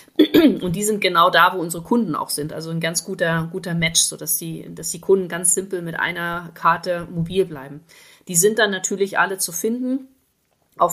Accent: German